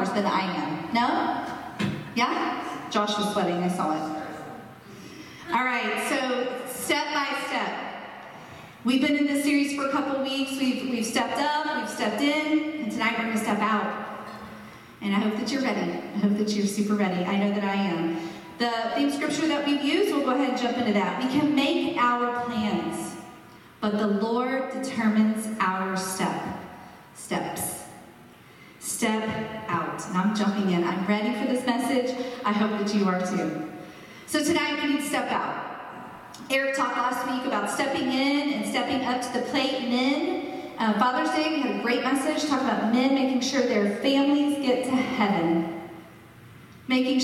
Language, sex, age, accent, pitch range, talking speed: English, female, 40-59, American, 205-265 Hz, 175 wpm